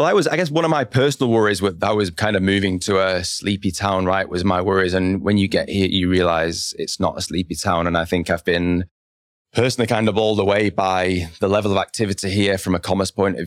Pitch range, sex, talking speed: 90-100 Hz, male, 255 wpm